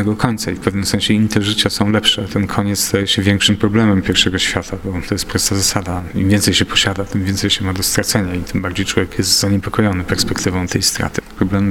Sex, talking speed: male, 220 wpm